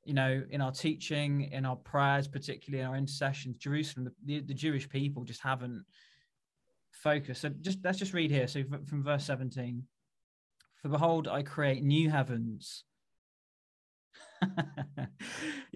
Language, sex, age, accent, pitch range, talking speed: English, male, 20-39, British, 130-150 Hz, 135 wpm